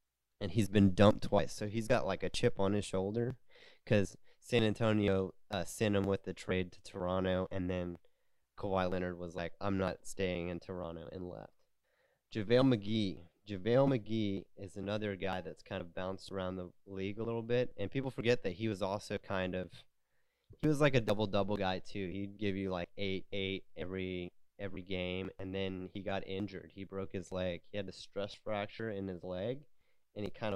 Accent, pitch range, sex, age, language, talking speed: American, 90-105 Hz, male, 20-39, English, 195 wpm